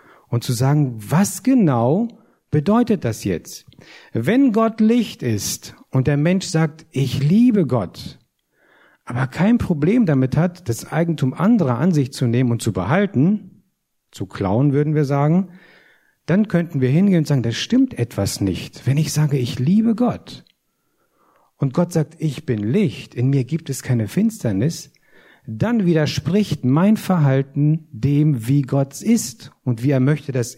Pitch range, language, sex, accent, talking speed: 130-180 Hz, German, male, German, 155 wpm